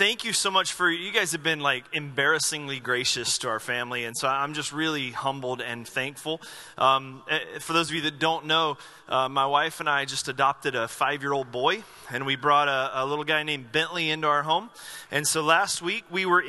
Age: 30-49